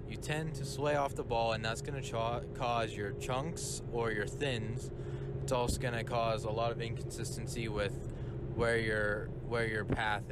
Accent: American